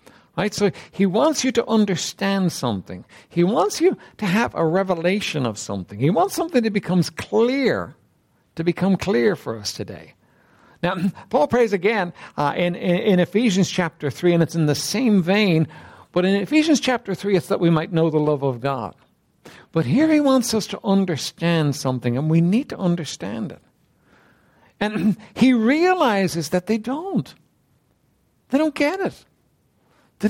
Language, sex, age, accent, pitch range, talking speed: English, male, 60-79, American, 160-235 Hz, 170 wpm